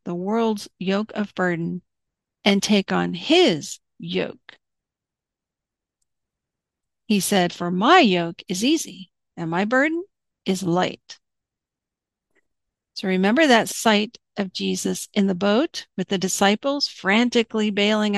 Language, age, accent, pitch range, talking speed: English, 50-69, American, 190-245 Hz, 120 wpm